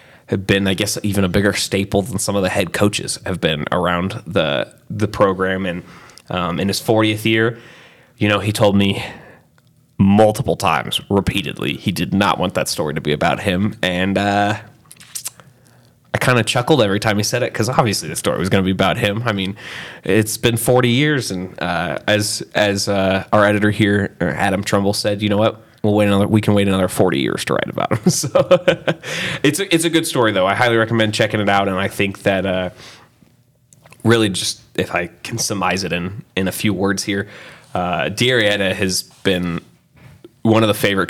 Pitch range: 95-115 Hz